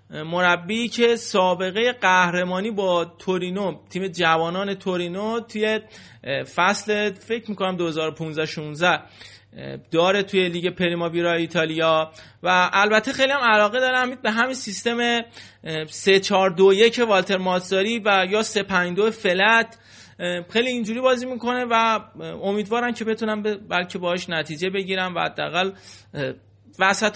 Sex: male